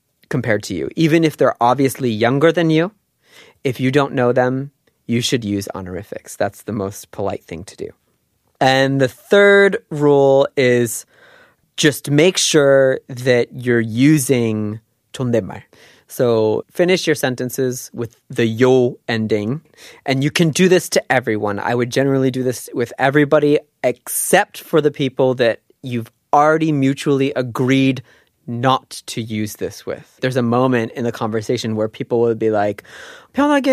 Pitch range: 120-150 Hz